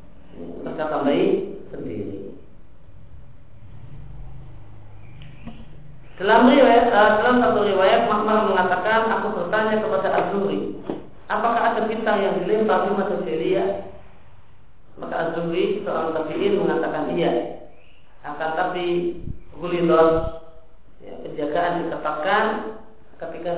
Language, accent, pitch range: Indonesian, native, 150-195 Hz